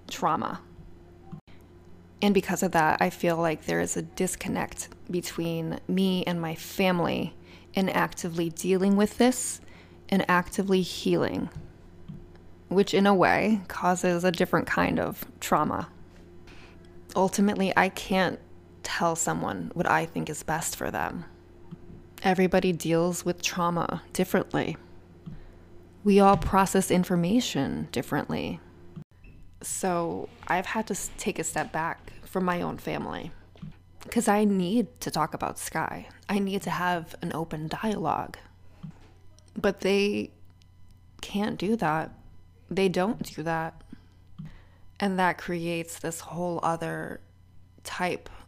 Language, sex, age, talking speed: English, female, 20-39, 125 wpm